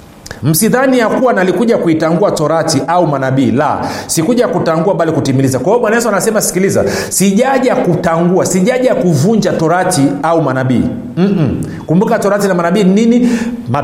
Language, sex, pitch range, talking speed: Swahili, male, 155-205 Hz, 115 wpm